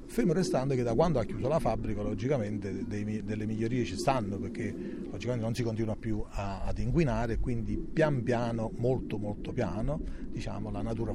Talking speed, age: 180 wpm, 40-59